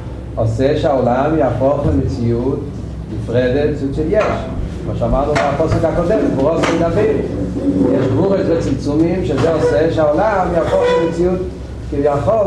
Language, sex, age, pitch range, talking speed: Hebrew, male, 40-59, 130-175 Hz, 90 wpm